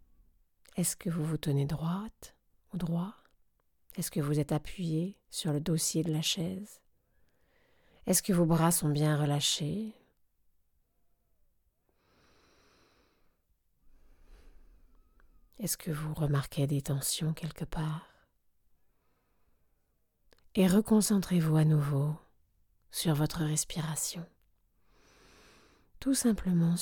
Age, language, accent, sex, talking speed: 40-59, French, French, female, 95 wpm